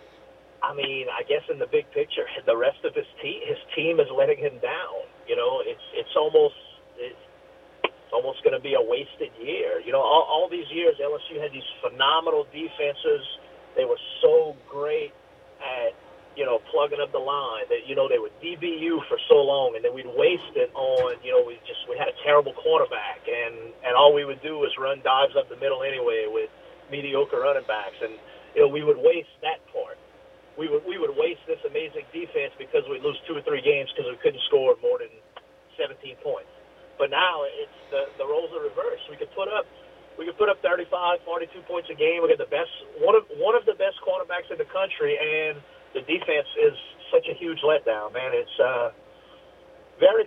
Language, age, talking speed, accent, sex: English, 40-59, 205 wpm, American, male